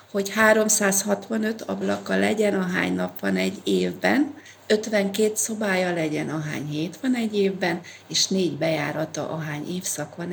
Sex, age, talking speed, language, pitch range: female, 40-59, 135 wpm, Hungarian, 175-210 Hz